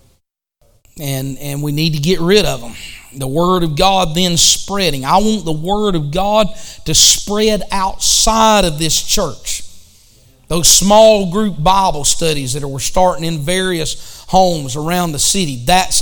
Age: 40-59